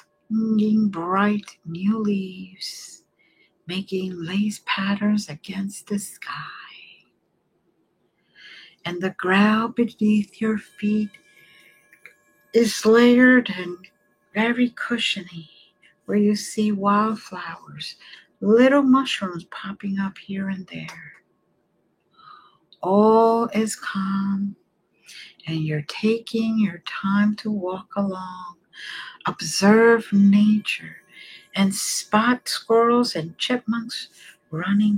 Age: 60-79